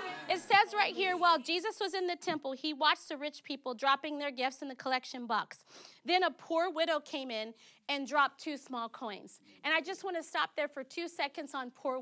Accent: American